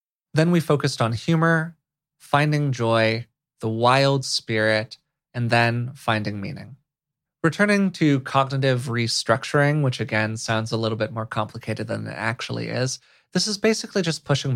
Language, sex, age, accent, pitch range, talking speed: English, male, 20-39, American, 115-155 Hz, 145 wpm